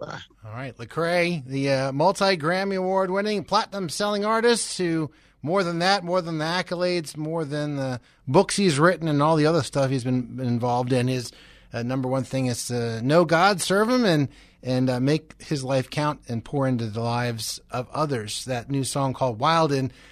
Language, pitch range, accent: English, 115-150 Hz, American